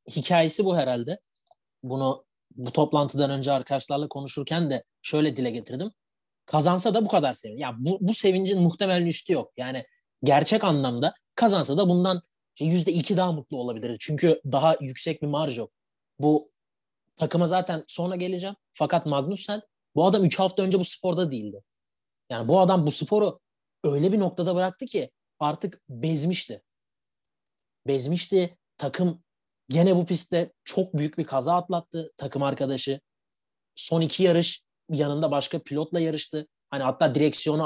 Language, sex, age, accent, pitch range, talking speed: Turkish, male, 30-49, native, 135-180 Hz, 145 wpm